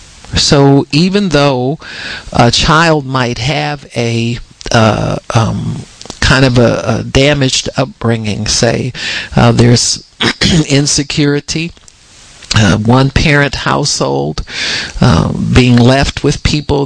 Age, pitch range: 50-69, 115-135 Hz